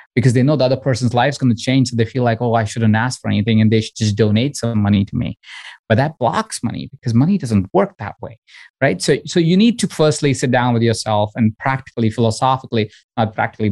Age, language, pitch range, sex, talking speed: 20-39, English, 110-135 Hz, male, 245 wpm